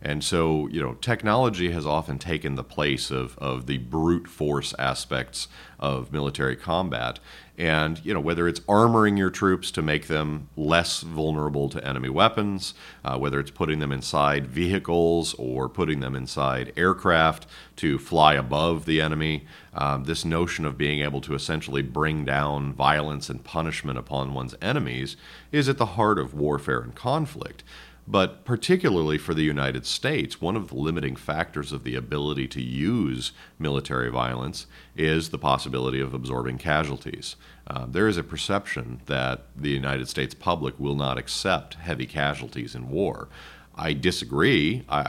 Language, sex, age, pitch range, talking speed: English, male, 40-59, 65-80 Hz, 160 wpm